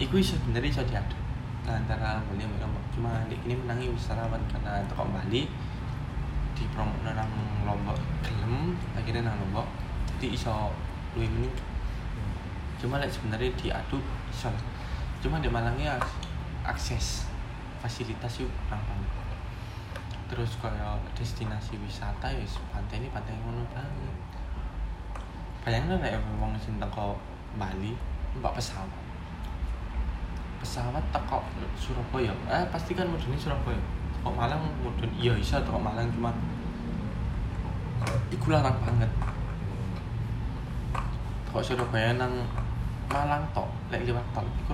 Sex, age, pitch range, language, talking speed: male, 20-39, 95-120 Hz, Indonesian, 115 wpm